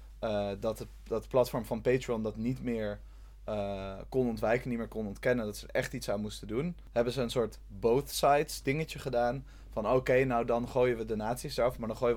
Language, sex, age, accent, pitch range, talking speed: Dutch, male, 20-39, Dutch, 105-125 Hz, 225 wpm